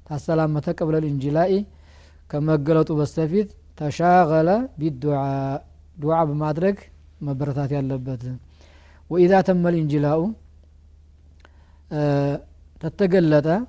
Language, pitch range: Amharic, 135-165 Hz